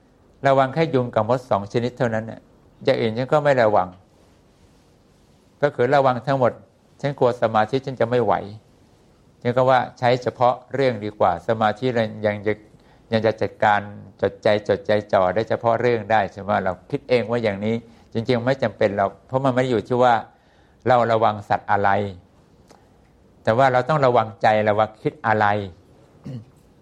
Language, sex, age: English, male, 60-79